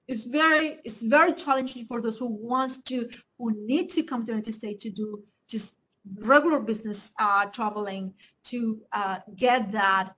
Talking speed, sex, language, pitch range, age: 165 wpm, female, English, 215-255 Hz, 30-49